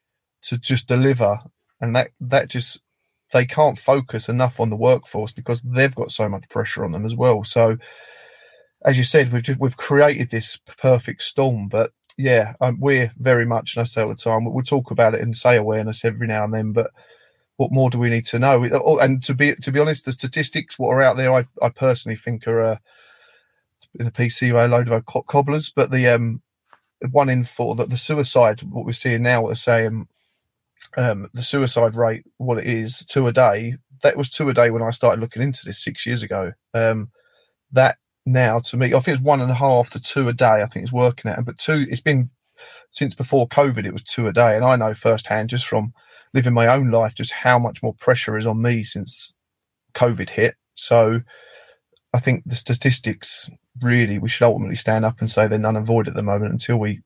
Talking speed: 220 wpm